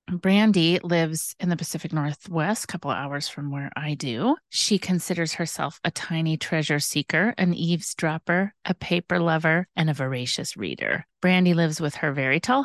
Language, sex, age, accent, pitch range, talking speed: English, female, 30-49, American, 145-175 Hz, 165 wpm